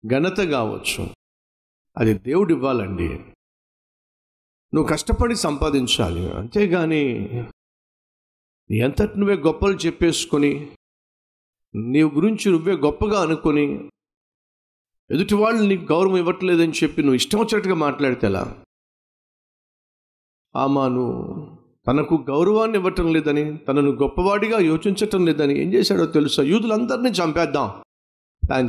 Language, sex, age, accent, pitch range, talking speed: Telugu, male, 50-69, native, 110-160 Hz, 90 wpm